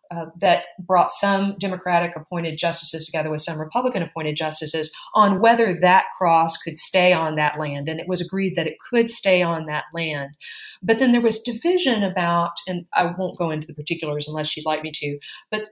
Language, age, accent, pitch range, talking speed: English, 40-59, American, 160-200 Hz, 200 wpm